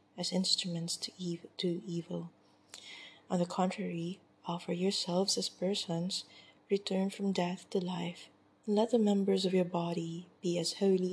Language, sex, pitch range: English, female, 170-190 Hz